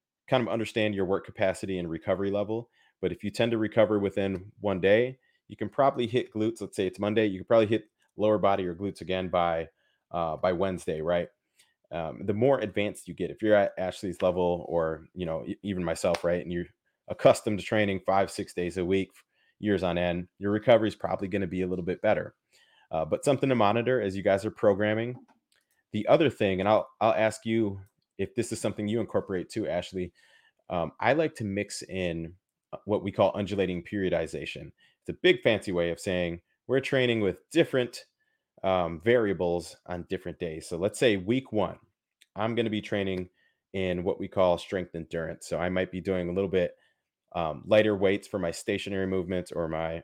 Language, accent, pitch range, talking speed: English, American, 90-110 Hz, 200 wpm